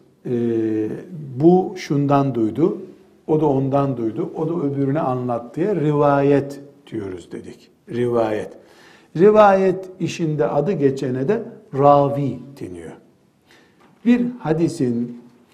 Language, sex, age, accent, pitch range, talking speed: Turkish, male, 60-79, native, 135-185 Hz, 100 wpm